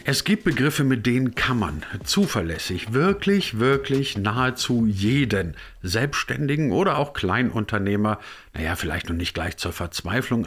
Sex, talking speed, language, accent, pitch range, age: male, 130 wpm, German, German, 95-125 Hz, 50-69